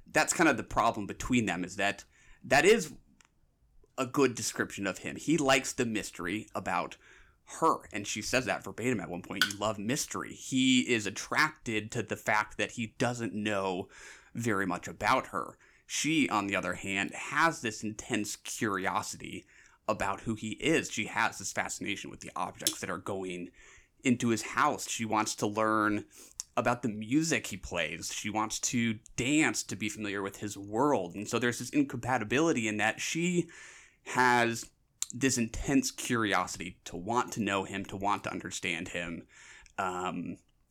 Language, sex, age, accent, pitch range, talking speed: English, male, 30-49, American, 100-125 Hz, 170 wpm